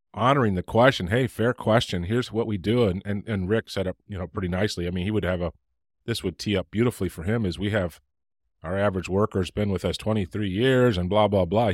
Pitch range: 90-110 Hz